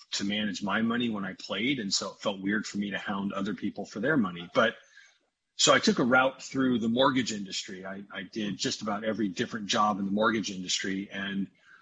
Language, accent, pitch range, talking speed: English, American, 100-115 Hz, 225 wpm